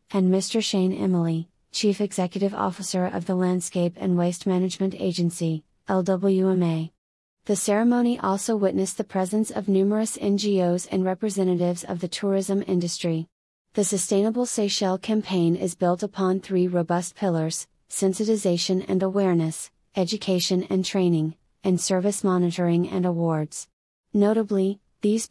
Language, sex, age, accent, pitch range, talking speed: English, female, 30-49, American, 175-195 Hz, 125 wpm